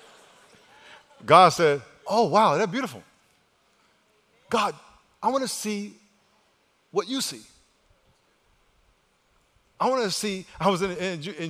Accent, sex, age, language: American, male, 50-69, English